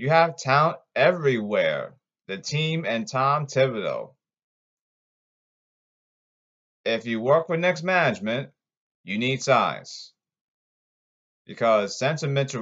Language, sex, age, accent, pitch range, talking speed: English, male, 30-49, American, 120-155 Hz, 100 wpm